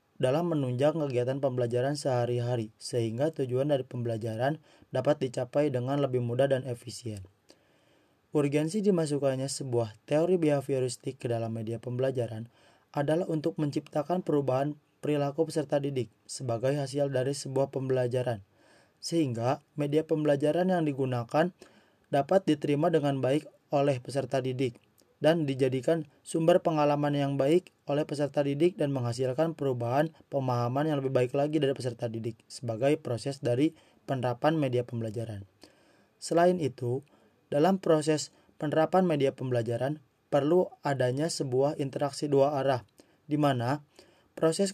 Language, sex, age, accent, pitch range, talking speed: Indonesian, male, 30-49, native, 125-155 Hz, 120 wpm